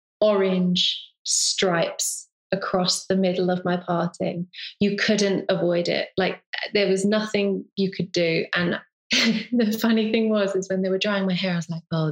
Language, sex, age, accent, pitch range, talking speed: English, female, 20-39, British, 180-220 Hz, 175 wpm